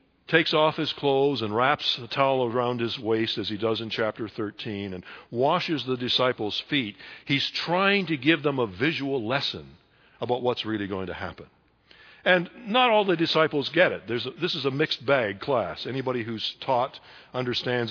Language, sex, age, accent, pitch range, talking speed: English, male, 60-79, American, 120-150 Hz, 185 wpm